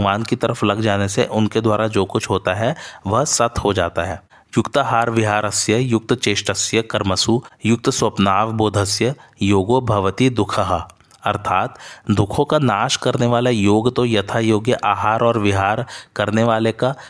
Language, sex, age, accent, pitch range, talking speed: Hindi, male, 20-39, native, 100-120 Hz, 160 wpm